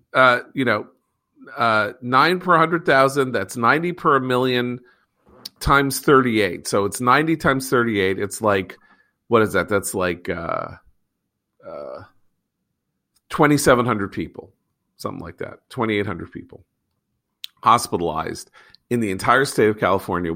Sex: male